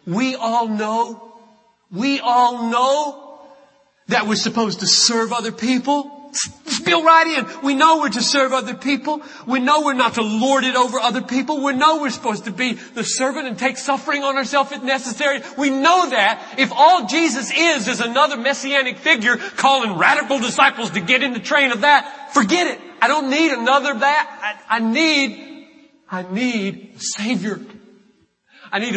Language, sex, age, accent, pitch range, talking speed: English, male, 40-59, American, 220-280 Hz, 175 wpm